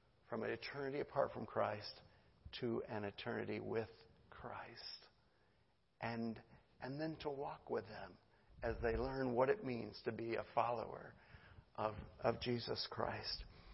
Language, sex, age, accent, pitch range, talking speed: English, male, 50-69, American, 125-175 Hz, 140 wpm